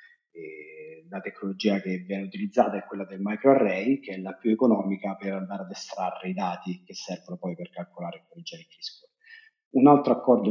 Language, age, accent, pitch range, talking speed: Italian, 30-49, native, 95-145 Hz, 175 wpm